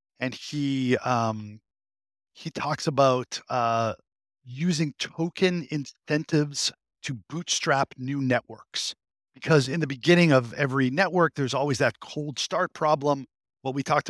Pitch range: 120-150 Hz